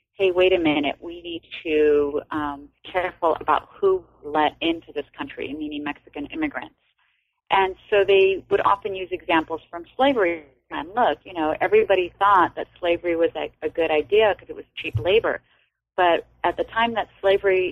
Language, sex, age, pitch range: English, female, 30-49, 150-175 Hz